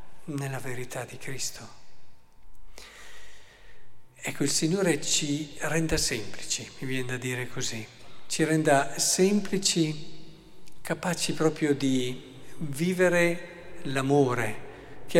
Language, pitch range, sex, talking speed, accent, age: Italian, 125-160 Hz, male, 95 wpm, native, 50-69